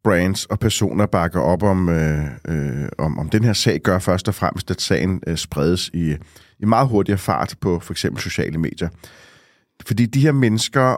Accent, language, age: native, Danish, 30-49